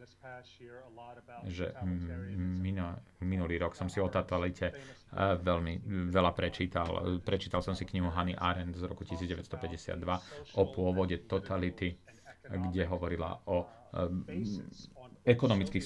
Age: 40-59